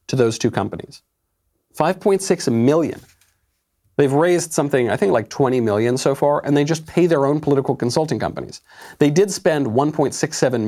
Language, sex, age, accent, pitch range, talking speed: English, male, 40-59, American, 110-165 Hz, 165 wpm